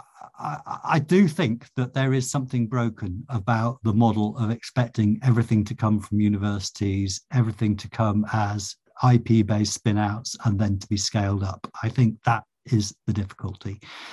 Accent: British